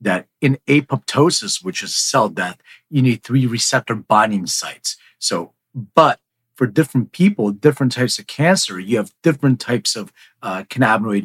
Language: English